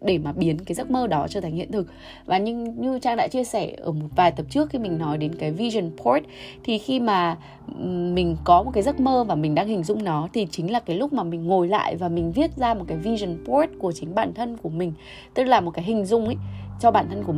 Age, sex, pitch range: 20-39, female, 165-235 Hz